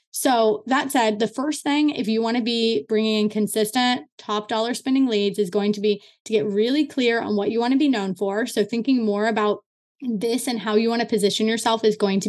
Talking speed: 240 wpm